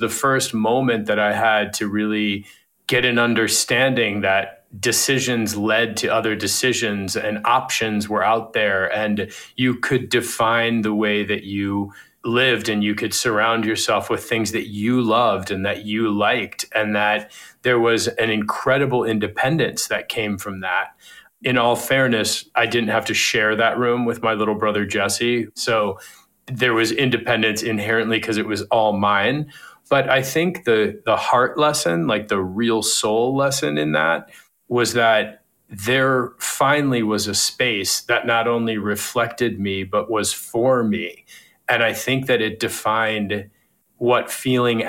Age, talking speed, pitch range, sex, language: 30-49, 160 wpm, 105-120 Hz, male, English